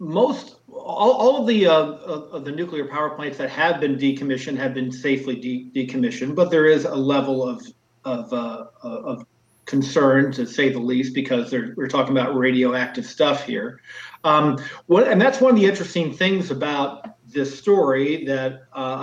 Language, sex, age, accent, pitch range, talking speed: English, male, 50-69, American, 130-160 Hz, 175 wpm